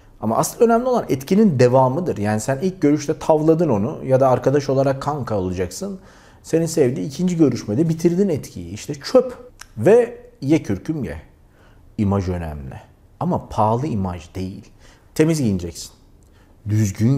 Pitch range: 105-155 Hz